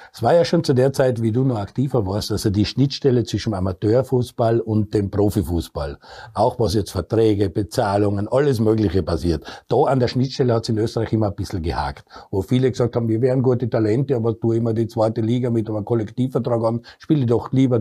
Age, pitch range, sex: 60-79, 110-125 Hz, male